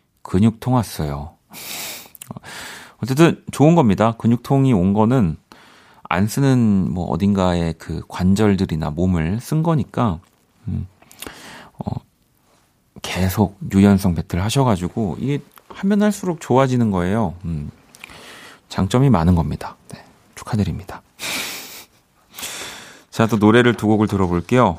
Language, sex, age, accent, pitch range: Korean, male, 40-59, native, 95-135 Hz